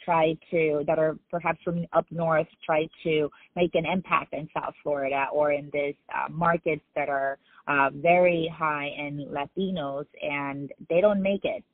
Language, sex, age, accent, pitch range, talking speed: English, female, 30-49, American, 145-175 Hz, 170 wpm